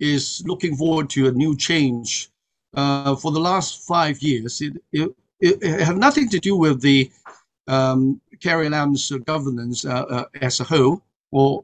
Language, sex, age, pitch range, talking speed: English, male, 60-79, 140-180 Hz, 175 wpm